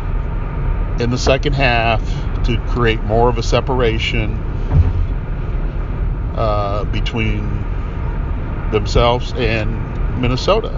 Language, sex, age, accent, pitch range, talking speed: English, male, 60-79, American, 90-125 Hz, 85 wpm